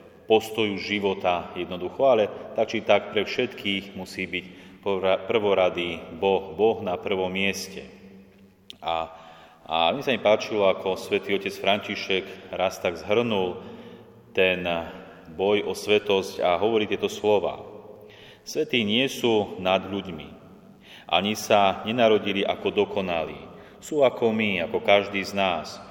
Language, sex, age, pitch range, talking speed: Slovak, male, 30-49, 95-105 Hz, 125 wpm